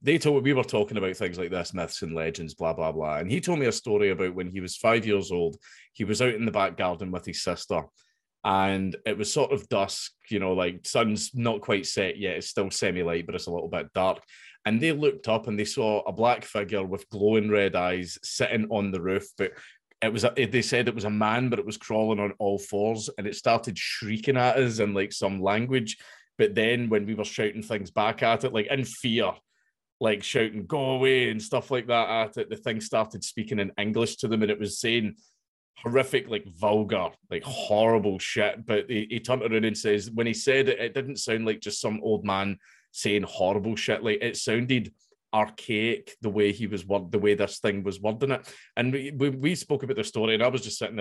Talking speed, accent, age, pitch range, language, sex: 230 wpm, British, 20-39, 100-125 Hz, English, male